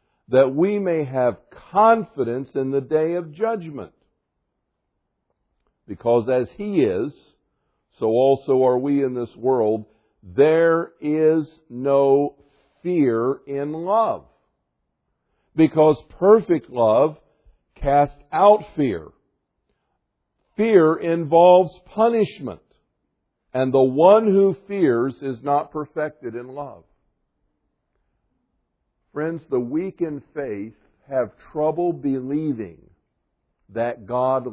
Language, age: English, 50-69